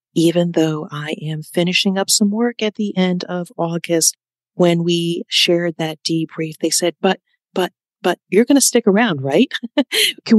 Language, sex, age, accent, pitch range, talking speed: English, female, 40-59, American, 160-210 Hz, 175 wpm